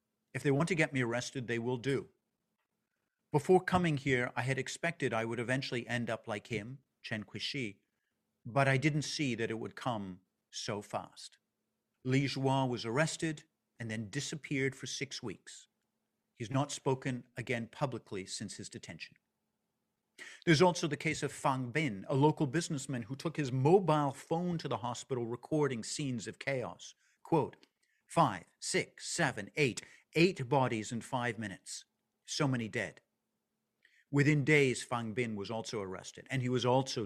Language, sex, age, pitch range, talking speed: English, male, 50-69, 115-145 Hz, 160 wpm